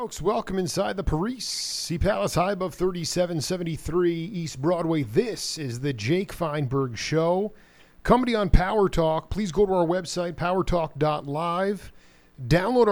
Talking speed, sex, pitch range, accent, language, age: 140 wpm, male, 145-180 Hz, American, English, 40-59